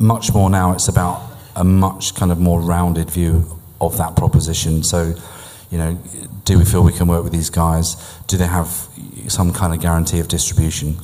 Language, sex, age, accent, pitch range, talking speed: English, male, 40-59, British, 85-95 Hz, 195 wpm